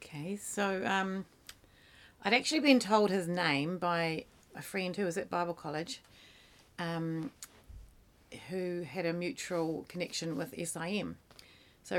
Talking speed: 130 wpm